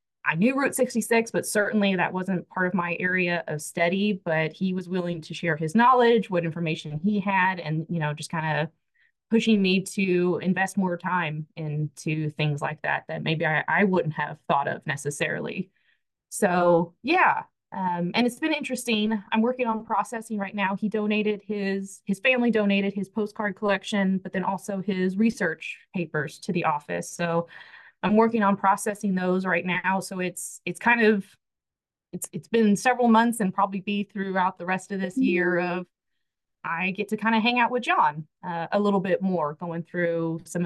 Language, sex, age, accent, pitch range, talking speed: English, female, 20-39, American, 170-205 Hz, 185 wpm